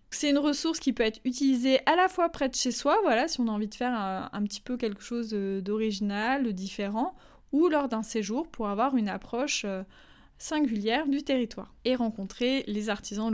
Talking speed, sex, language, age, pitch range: 205 wpm, female, French, 20-39, 210-270 Hz